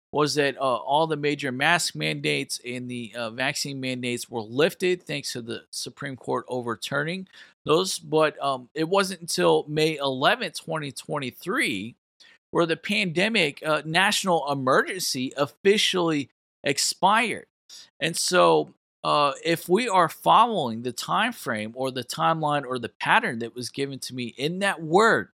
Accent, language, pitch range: American, English, 125-165 Hz